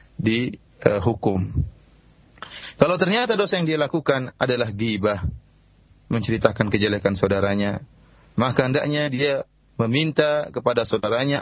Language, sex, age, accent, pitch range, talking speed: Indonesian, male, 30-49, native, 110-155 Hz, 105 wpm